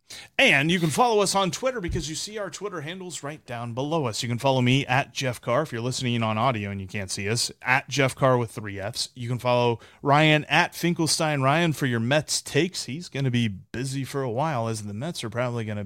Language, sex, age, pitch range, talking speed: English, male, 30-49, 110-145 Hz, 250 wpm